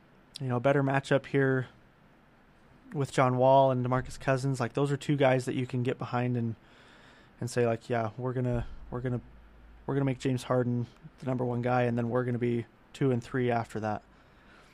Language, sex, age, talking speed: English, male, 20-39, 200 wpm